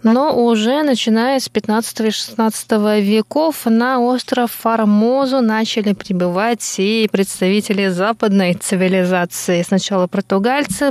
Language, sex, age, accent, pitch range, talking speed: Russian, female, 20-39, native, 200-245 Hz, 95 wpm